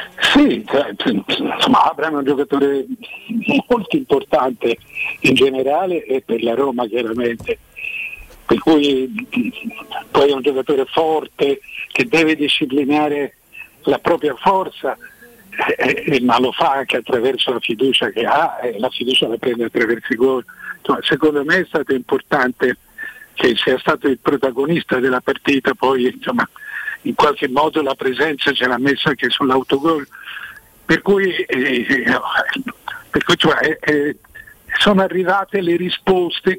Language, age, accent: Italian, 60-79, native